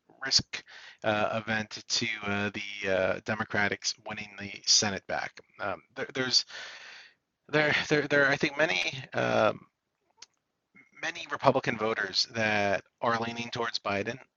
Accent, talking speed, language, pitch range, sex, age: American, 130 wpm, English, 105-125 Hz, male, 40-59